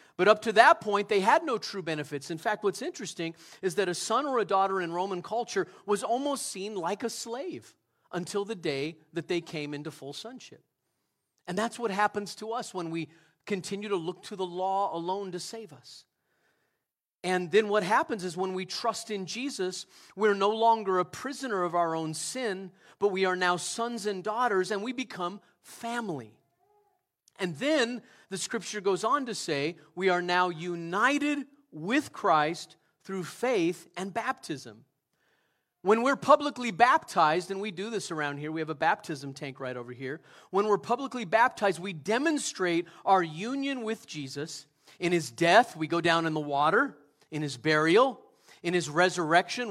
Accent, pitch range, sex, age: American, 170-225 Hz, male, 40-59